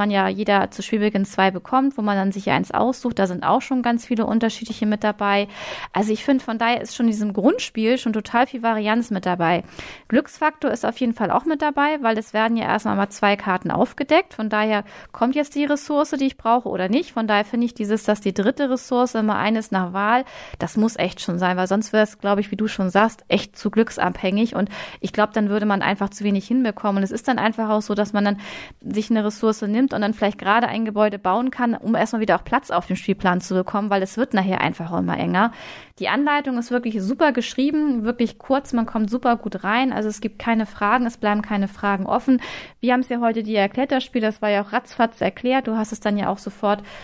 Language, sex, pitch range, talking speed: German, female, 205-245 Hz, 240 wpm